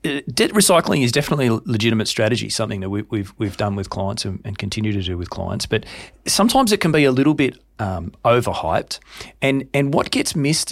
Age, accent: 40-59, Australian